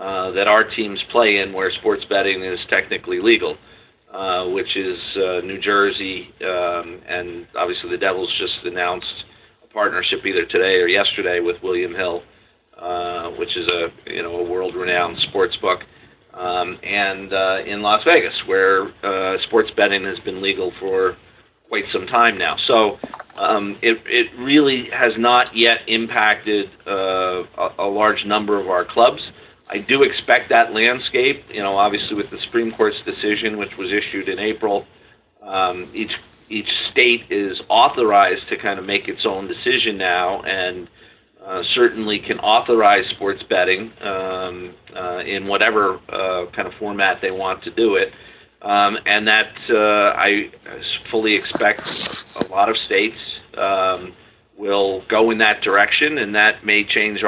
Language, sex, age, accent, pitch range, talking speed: English, male, 40-59, American, 95-115 Hz, 160 wpm